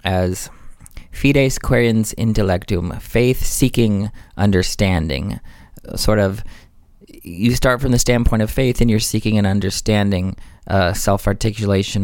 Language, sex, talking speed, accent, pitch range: English, male, 115 wpm, American, 95-120 Hz